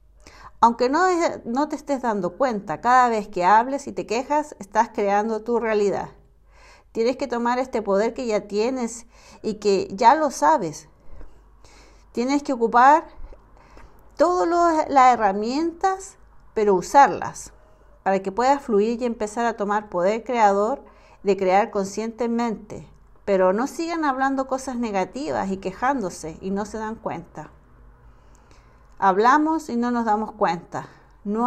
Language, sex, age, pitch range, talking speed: Spanish, female, 50-69, 200-275 Hz, 135 wpm